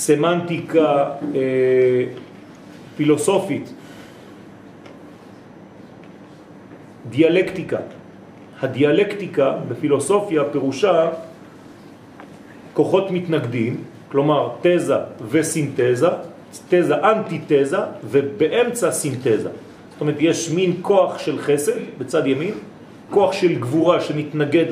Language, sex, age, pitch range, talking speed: French, male, 40-59, 140-175 Hz, 75 wpm